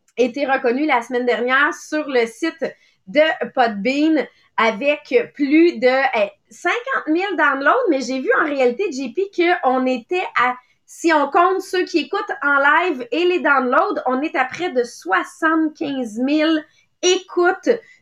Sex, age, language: female, 30-49, English